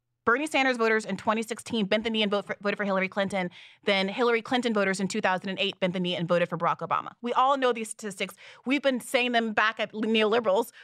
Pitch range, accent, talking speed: 190-255 Hz, American, 215 wpm